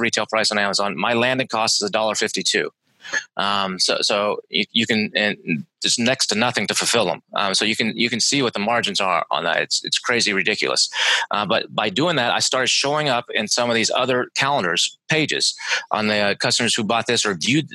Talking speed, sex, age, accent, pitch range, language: 220 wpm, male, 30-49, American, 105-130 Hz, English